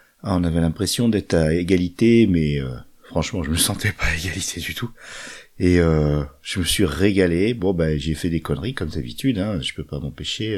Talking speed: 210 wpm